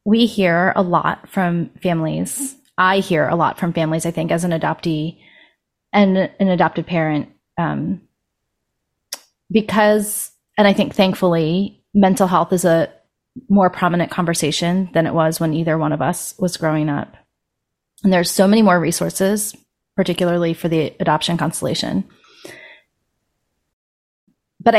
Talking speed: 140 wpm